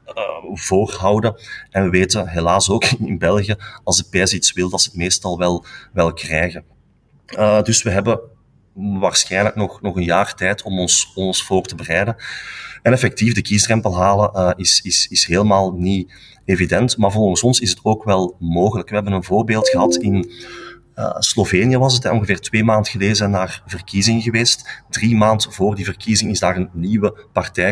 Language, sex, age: Dutch, male, 30-49